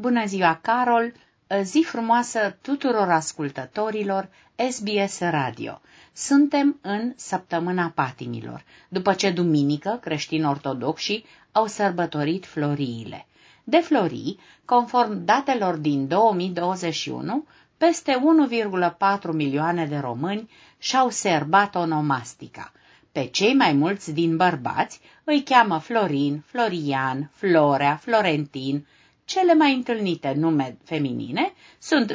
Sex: female